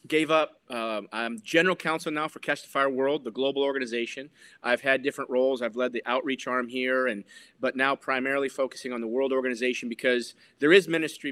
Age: 30-49